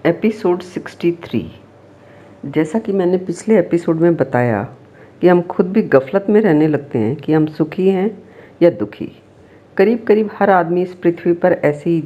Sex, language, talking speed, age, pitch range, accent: female, Hindi, 165 wpm, 50-69, 145-190 Hz, native